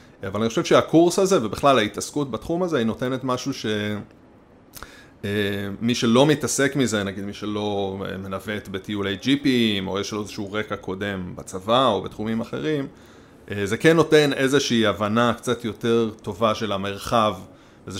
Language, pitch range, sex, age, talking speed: Hebrew, 105-135 Hz, male, 30-49, 145 wpm